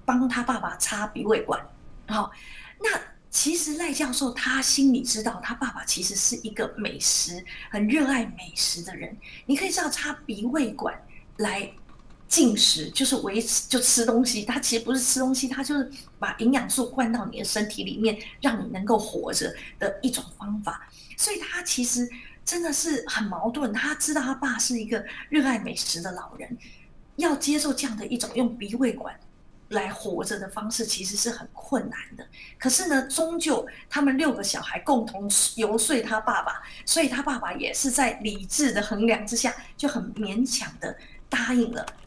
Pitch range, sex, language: 220-275 Hz, female, Chinese